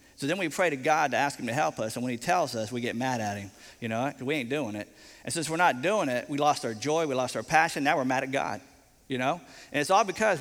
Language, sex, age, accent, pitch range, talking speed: English, male, 40-59, American, 115-155 Hz, 305 wpm